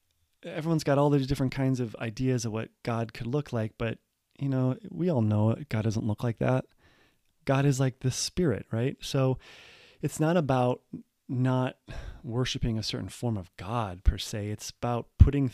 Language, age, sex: English, 30-49, male